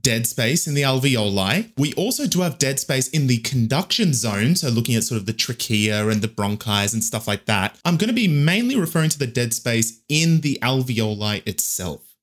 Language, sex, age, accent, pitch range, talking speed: English, male, 20-39, Australian, 115-175 Hz, 210 wpm